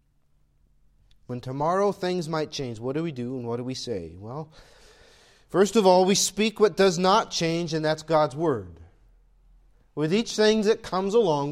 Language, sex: English, male